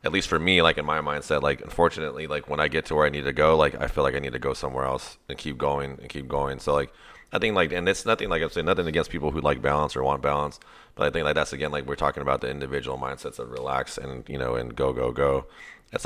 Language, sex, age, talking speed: English, male, 30-49, 295 wpm